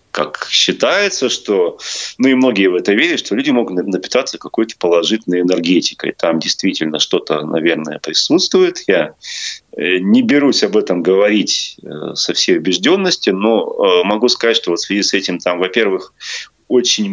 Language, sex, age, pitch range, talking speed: Russian, male, 30-49, 90-130 Hz, 145 wpm